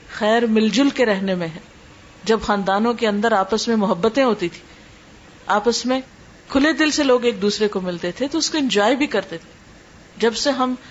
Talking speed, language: 200 wpm, Urdu